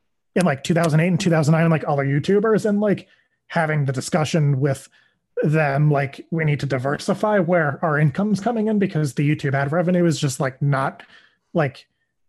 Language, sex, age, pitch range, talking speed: English, male, 30-49, 145-175 Hz, 175 wpm